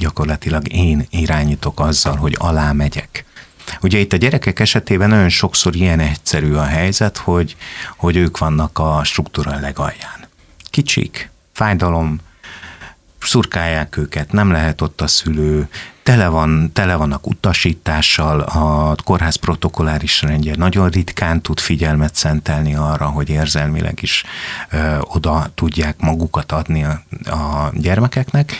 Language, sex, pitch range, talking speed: Hungarian, male, 75-90 Hz, 120 wpm